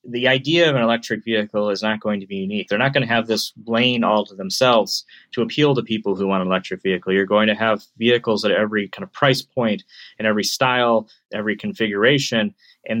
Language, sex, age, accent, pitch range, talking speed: English, male, 20-39, American, 100-120 Hz, 220 wpm